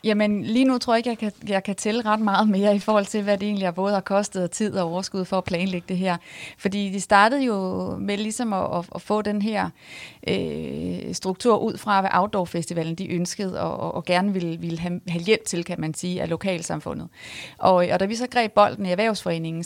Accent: native